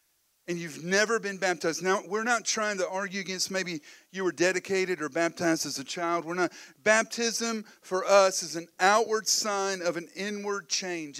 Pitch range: 135-195 Hz